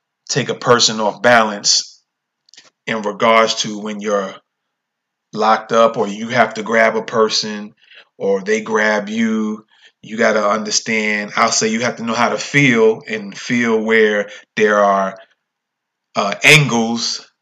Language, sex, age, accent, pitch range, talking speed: English, male, 30-49, American, 105-130 Hz, 150 wpm